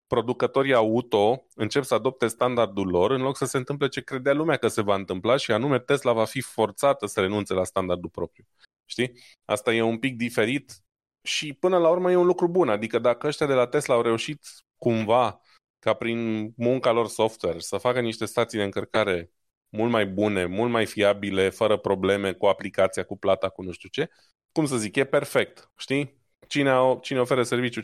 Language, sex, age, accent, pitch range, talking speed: Romanian, male, 20-39, native, 100-135 Hz, 195 wpm